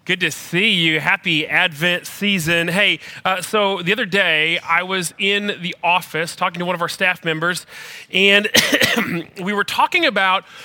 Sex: male